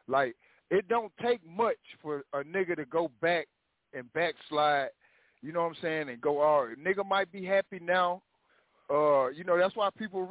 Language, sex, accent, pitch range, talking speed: English, male, American, 160-200 Hz, 190 wpm